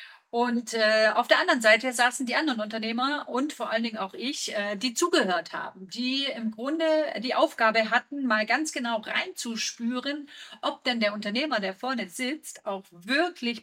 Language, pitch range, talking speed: German, 205-265 Hz, 170 wpm